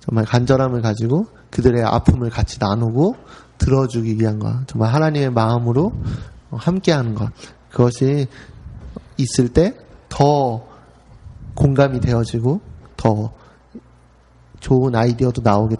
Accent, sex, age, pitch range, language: native, male, 30-49, 115-140 Hz, Korean